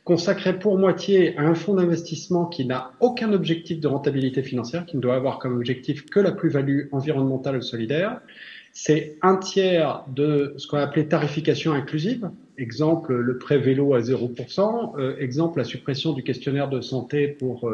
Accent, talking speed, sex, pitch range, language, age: French, 175 wpm, male, 130-180 Hz, French, 40-59